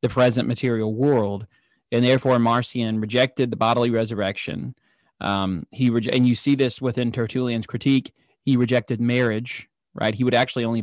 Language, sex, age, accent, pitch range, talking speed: English, male, 20-39, American, 110-130 Hz, 160 wpm